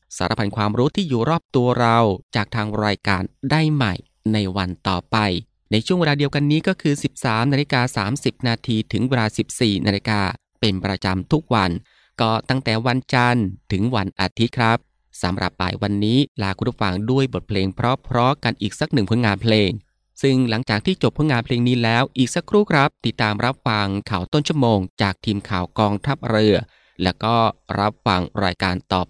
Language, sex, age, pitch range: Thai, male, 20-39, 100-135 Hz